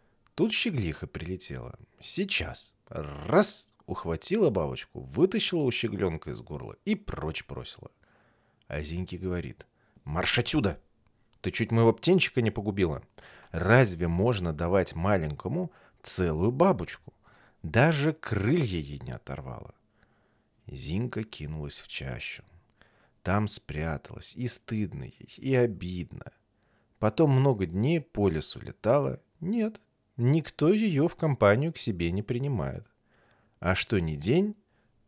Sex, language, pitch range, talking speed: male, Russian, 90-135 Hz, 115 wpm